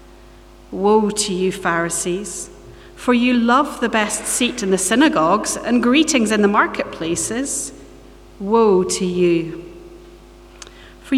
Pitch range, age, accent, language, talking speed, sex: 180-275 Hz, 40-59, British, English, 120 wpm, female